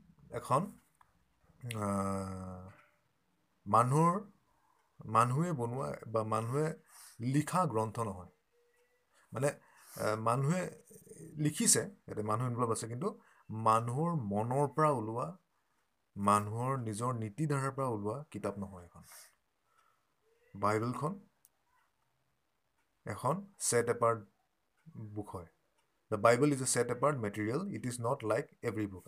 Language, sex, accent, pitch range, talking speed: English, male, Indian, 110-150 Hz, 75 wpm